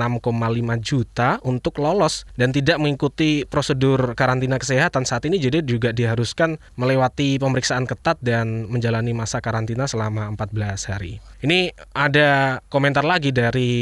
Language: Indonesian